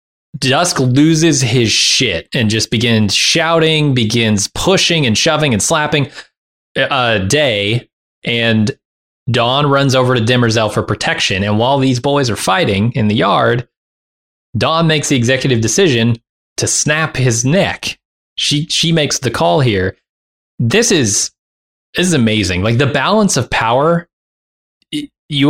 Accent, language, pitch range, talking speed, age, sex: American, English, 105-140 Hz, 140 wpm, 20-39, male